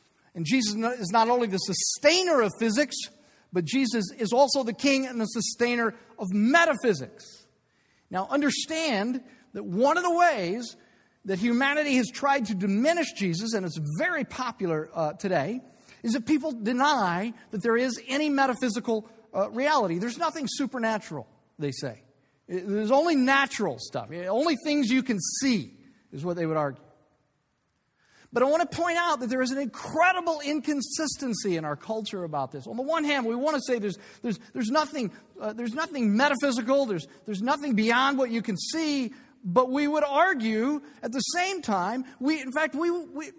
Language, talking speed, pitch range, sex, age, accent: English, 170 wpm, 200-290 Hz, male, 50-69, American